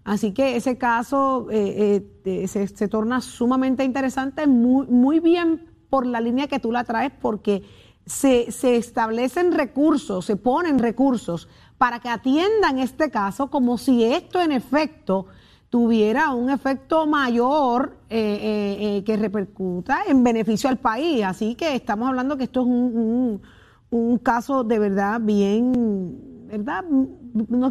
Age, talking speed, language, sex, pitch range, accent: 30-49, 145 wpm, Spanish, female, 220-270 Hz, American